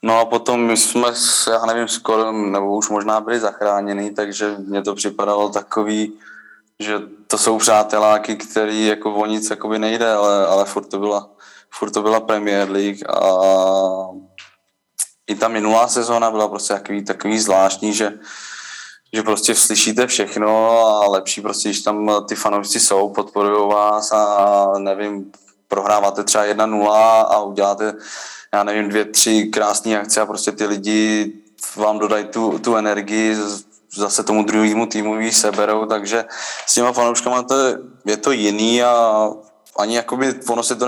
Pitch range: 105-110 Hz